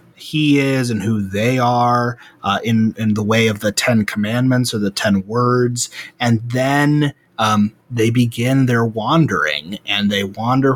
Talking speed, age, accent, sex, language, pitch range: 160 wpm, 30-49, American, male, English, 115-145 Hz